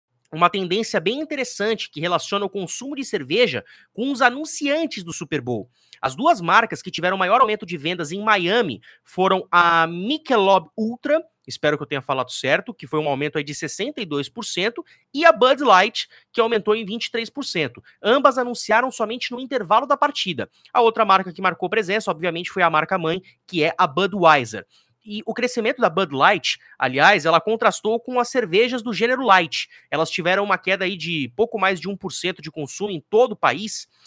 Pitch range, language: 160-230 Hz, Portuguese